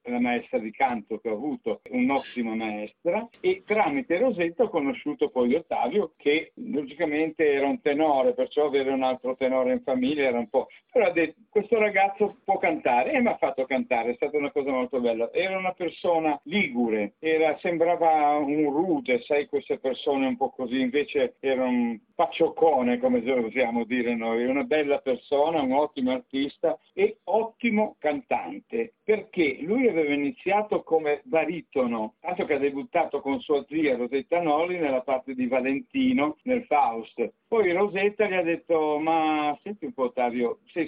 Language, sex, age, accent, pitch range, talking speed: Italian, male, 60-79, native, 130-210 Hz, 165 wpm